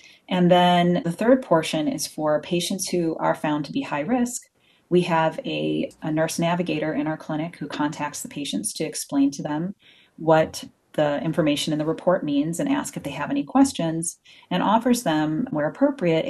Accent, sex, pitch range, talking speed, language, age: American, female, 145-210 Hz, 190 wpm, English, 30-49